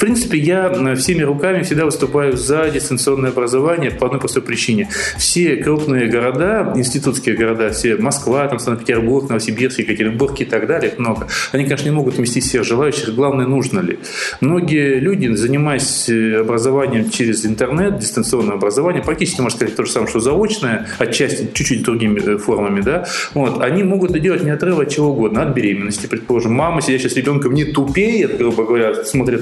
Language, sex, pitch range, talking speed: Russian, male, 115-150 Hz, 165 wpm